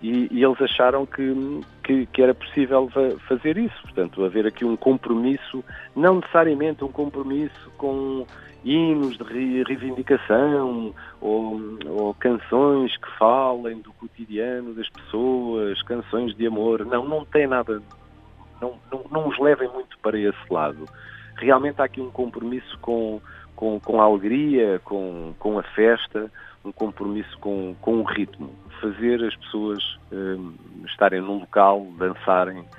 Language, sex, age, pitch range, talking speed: Portuguese, male, 40-59, 100-130 Hz, 140 wpm